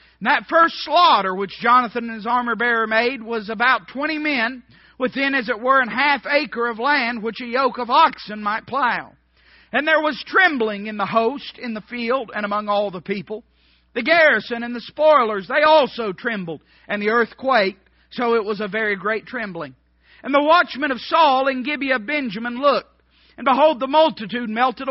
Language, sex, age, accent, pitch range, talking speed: English, male, 50-69, American, 235-285 Hz, 190 wpm